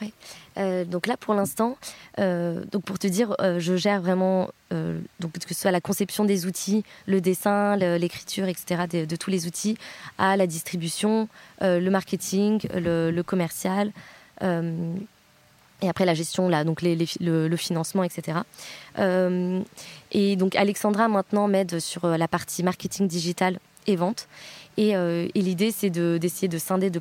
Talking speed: 175 wpm